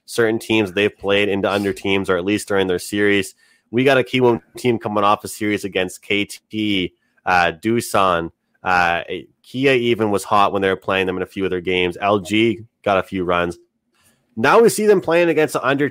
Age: 30-49